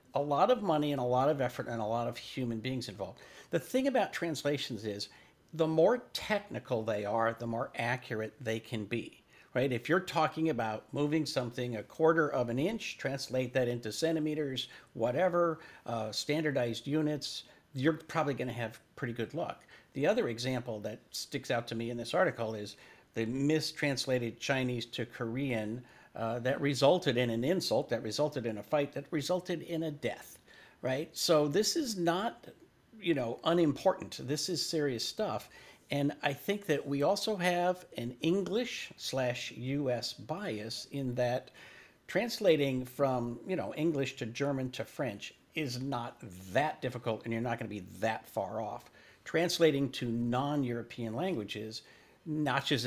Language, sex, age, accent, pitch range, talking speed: English, male, 50-69, American, 120-155 Hz, 165 wpm